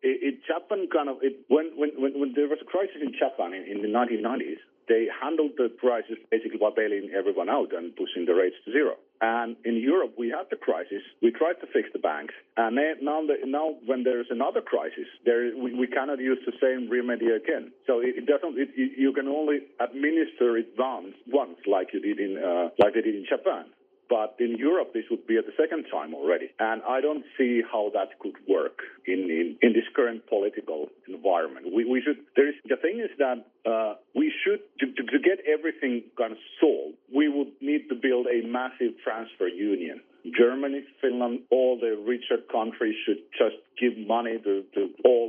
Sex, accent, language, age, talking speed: male, Finnish, English, 50-69, 205 wpm